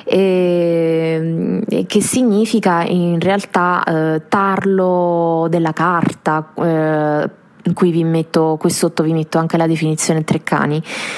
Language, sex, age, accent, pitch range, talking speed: Italian, female, 20-39, native, 165-205 Hz, 115 wpm